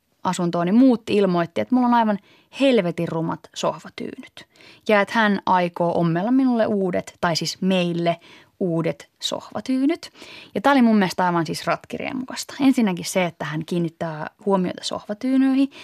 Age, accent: 20-39, native